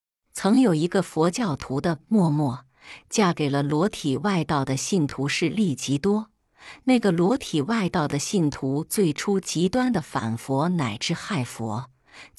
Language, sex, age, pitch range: Chinese, female, 50-69, 140-210 Hz